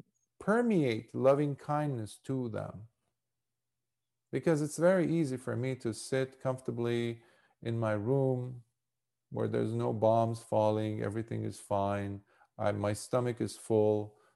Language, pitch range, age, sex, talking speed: English, 105-135 Hz, 40-59, male, 120 wpm